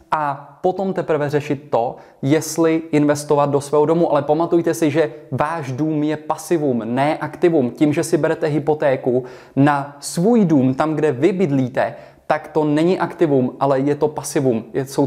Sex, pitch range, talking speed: male, 140-165 Hz, 165 wpm